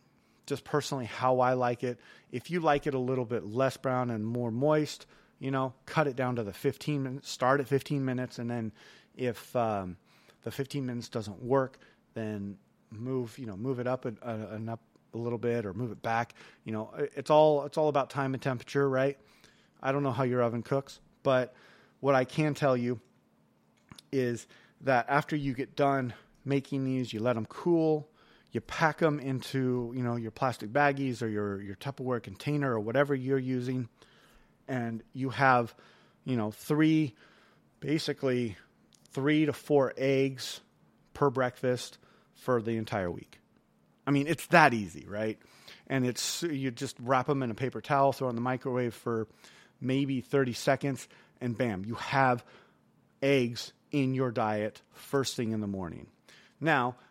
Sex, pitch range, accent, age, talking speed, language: male, 120-140 Hz, American, 30-49, 175 wpm, English